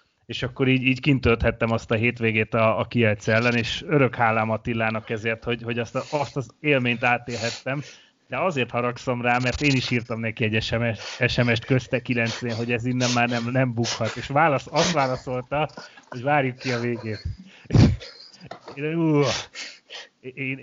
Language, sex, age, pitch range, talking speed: Hungarian, male, 30-49, 110-130 Hz, 160 wpm